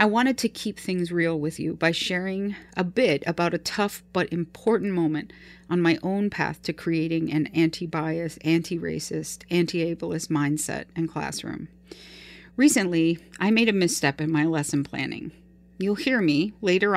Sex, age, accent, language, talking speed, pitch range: female, 40-59, American, English, 155 wpm, 155-190 Hz